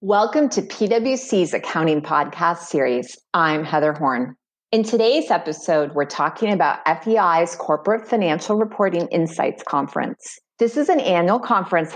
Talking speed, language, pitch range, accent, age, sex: 130 wpm, English, 160-225 Hz, American, 30-49, female